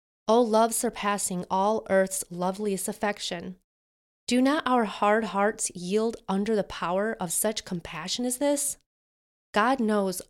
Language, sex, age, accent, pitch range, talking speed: English, female, 30-49, American, 185-220 Hz, 135 wpm